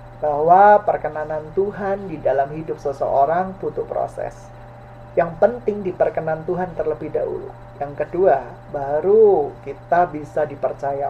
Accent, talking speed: native, 115 wpm